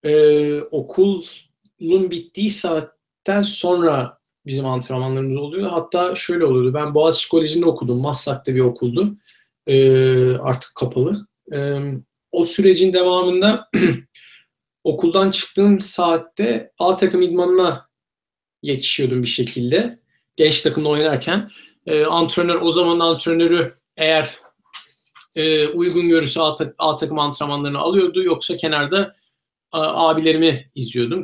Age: 50-69